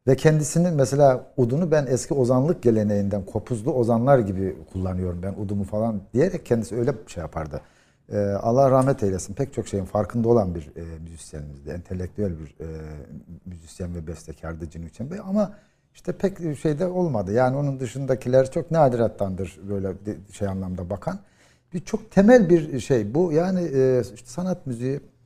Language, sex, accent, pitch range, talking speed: Turkish, male, native, 100-165 Hz, 160 wpm